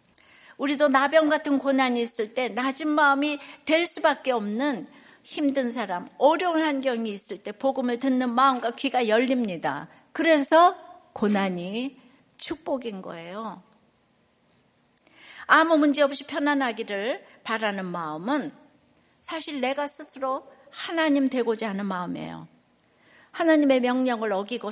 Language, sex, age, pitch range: Korean, female, 60-79, 205-280 Hz